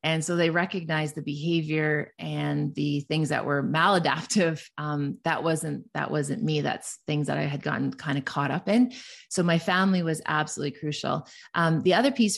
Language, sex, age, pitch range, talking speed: English, female, 30-49, 160-185 Hz, 190 wpm